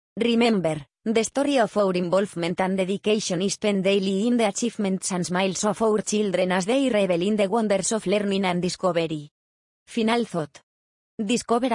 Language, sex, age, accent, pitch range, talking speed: English, female, 20-39, Spanish, 185-220 Hz, 165 wpm